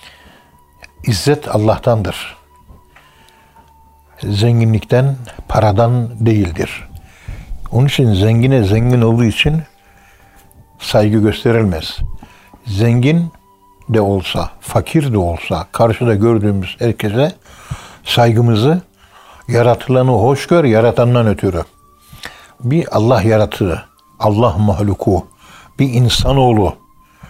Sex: male